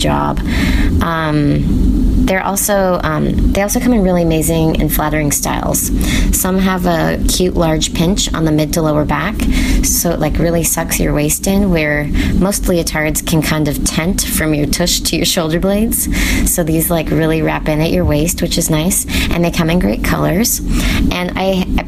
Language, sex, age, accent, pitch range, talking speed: English, female, 20-39, American, 150-180 Hz, 190 wpm